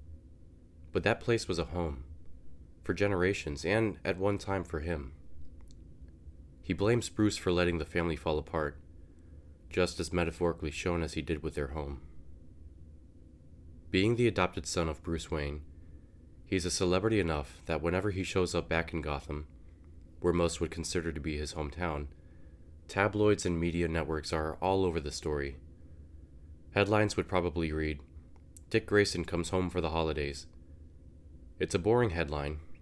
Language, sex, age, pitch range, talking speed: English, male, 20-39, 75-85 Hz, 155 wpm